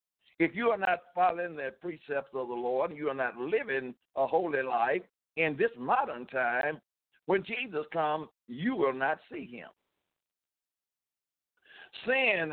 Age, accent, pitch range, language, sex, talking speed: 60-79, American, 130-180 Hz, English, male, 145 wpm